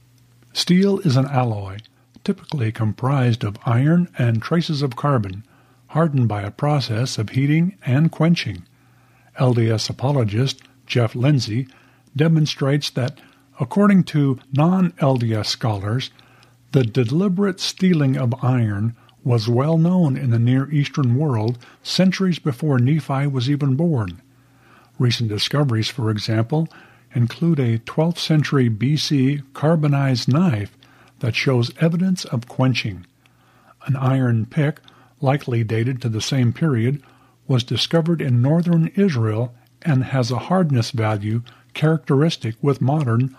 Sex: male